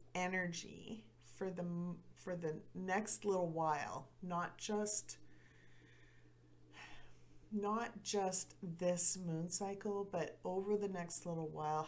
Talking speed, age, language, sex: 105 wpm, 40-59, English, female